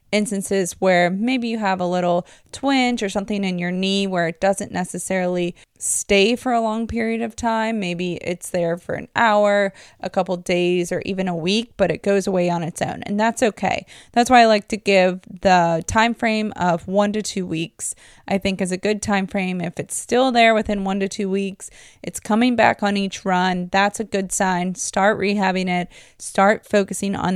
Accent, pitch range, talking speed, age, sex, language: American, 185-215 Hz, 205 wpm, 20-39, female, English